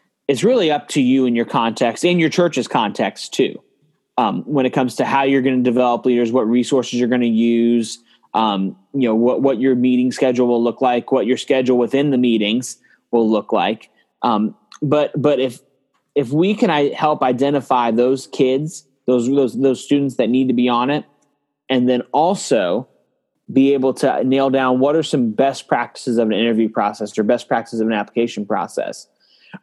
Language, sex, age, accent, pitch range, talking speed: English, male, 20-39, American, 120-140 Hz, 195 wpm